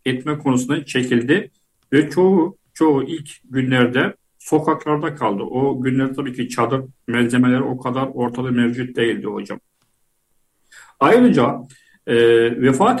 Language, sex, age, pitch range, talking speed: Turkish, male, 50-69, 125-150 Hz, 115 wpm